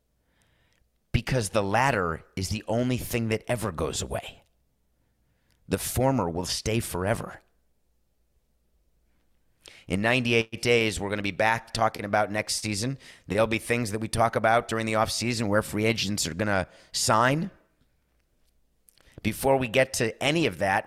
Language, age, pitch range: English, 30-49, 90-115 Hz